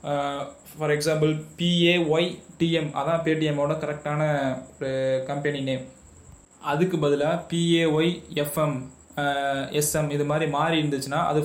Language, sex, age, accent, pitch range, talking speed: Tamil, male, 20-39, native, 140-155 Hz, 95 wpm